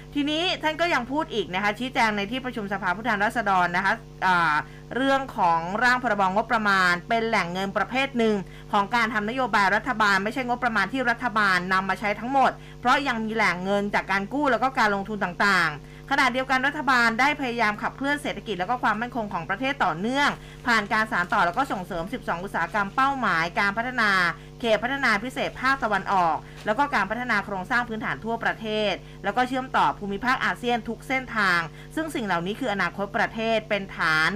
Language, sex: Thai, female